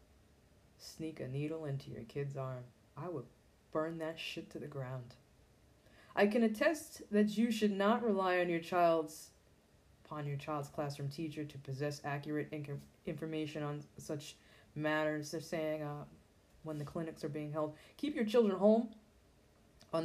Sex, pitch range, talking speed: female, 150-205 Hz, 155 wpm